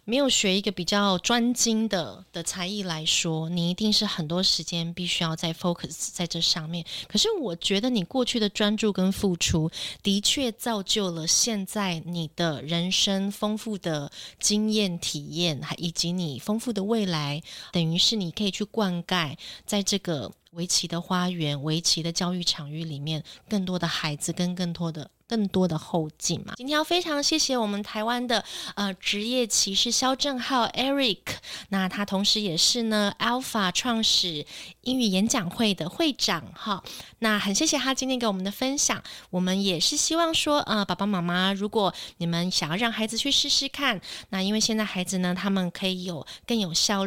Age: 20-39